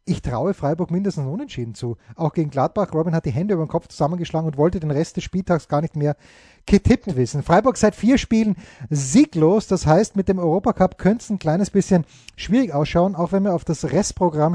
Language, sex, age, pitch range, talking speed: German, male, 30-49, 150-190 Hz, 210 wpm